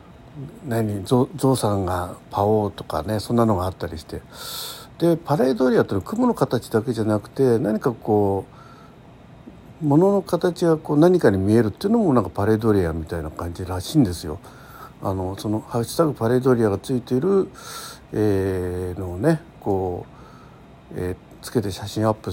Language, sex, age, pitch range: Japanese, male, 60-79, 95-135 Hz